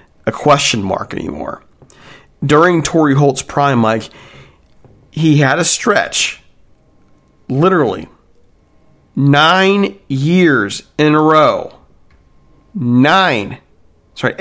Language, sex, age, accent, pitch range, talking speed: English, male, 40-59, American, 125-155 Hz, 85 wpm